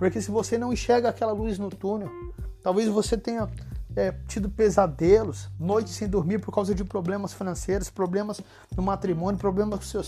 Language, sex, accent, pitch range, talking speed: Portuguese, male, Brazilian, 190-220 Hz, 175 wpm